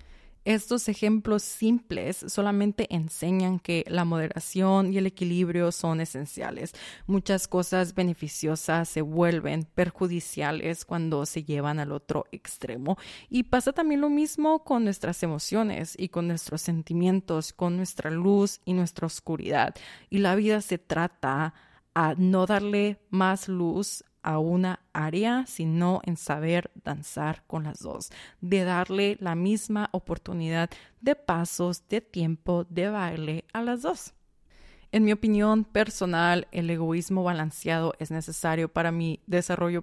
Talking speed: 135 wpm